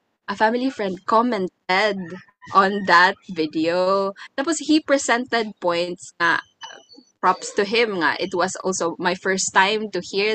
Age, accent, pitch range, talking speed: 20-39, native, 180-235 Hz, 140 wpm